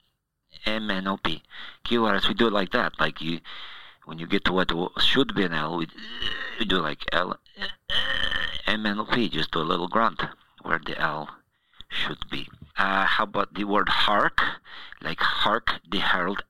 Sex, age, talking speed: male, 50-69, 170 wpm